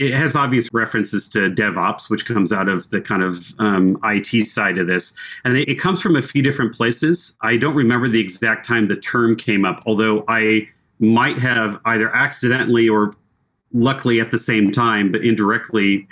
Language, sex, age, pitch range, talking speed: English, male, 40-59, 105-125 Hz, 185 wpm